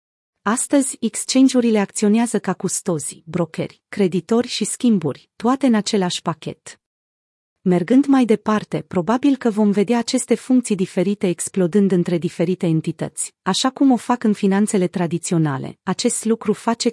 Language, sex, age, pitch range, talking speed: Romanian, female, 30-49, 175-225 Hz, 130 wpm